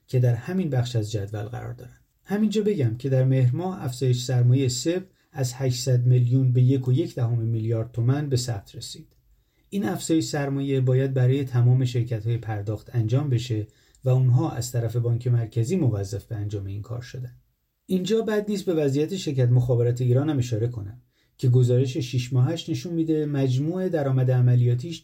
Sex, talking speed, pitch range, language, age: male, 175 wpm, 120-145 Hz, Persian, 30-49